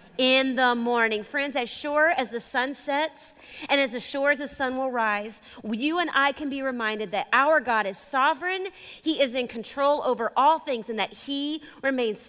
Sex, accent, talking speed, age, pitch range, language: female, American, 195 wpm, 30-49, 220-280 Hz, English